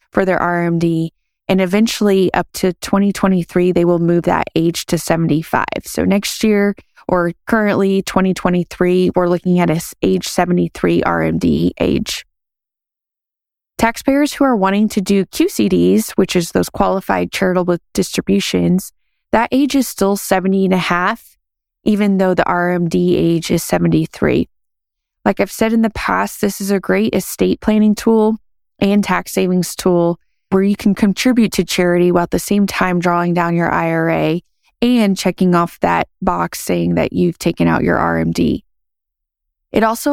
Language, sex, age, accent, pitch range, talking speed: English, female, 20-39, American, 170-200 Hz, 155 wpm